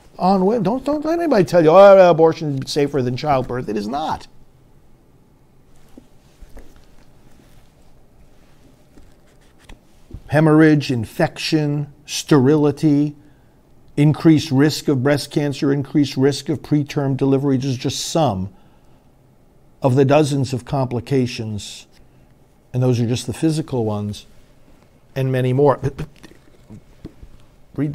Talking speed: 100 wpm